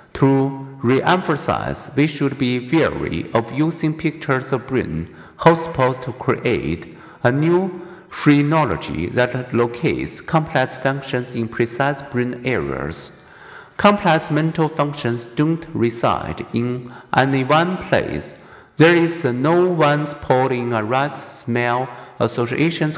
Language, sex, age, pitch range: Chinese, male, 50-69, 120-150 Hz